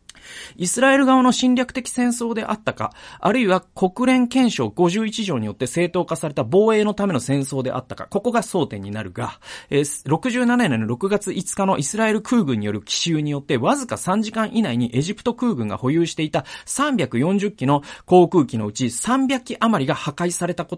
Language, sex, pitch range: Japanese, male, 125-210 Hz